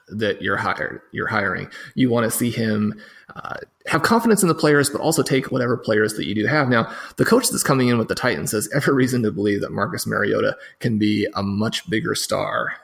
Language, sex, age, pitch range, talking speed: English, male, 20-39, 105-130 Hz, 225 wpm